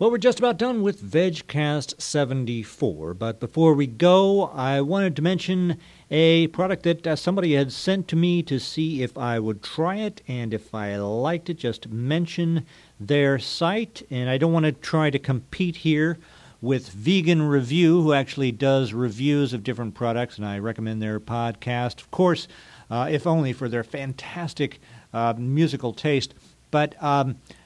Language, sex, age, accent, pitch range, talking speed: English, male, 50-69, American, 120-160 Hz, 165 wpm